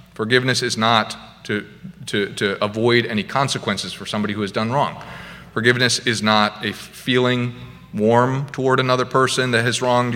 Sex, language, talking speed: male, English, 160 wpm